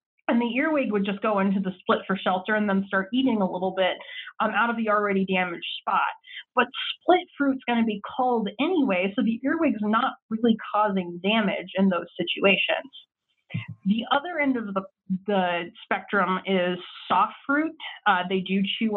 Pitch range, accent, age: 190-235 Hz, American, 30-49